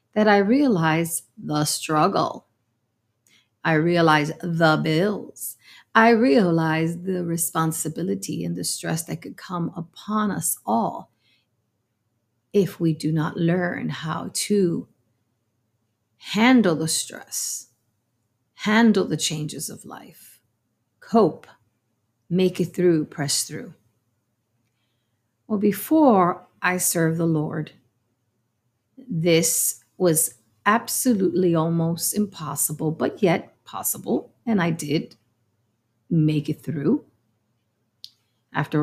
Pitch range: 120-180 Hz